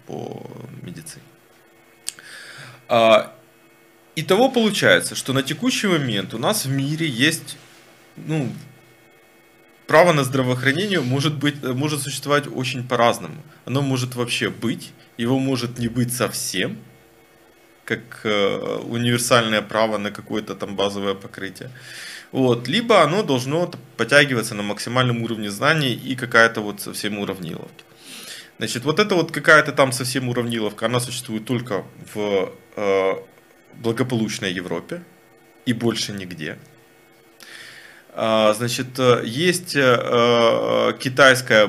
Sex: male